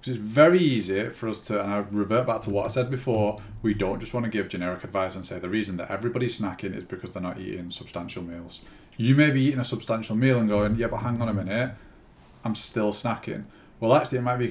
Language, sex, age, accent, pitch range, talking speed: English, male, 30-49, British, 105-125 Hz, 255 wpm